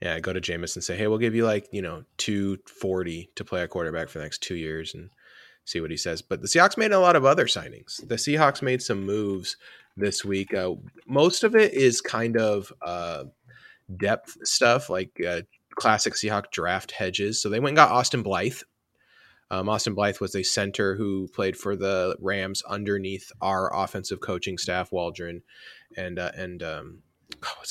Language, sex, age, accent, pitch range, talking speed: English, male, 20-39, American, 95-110 Hz, 195 wpm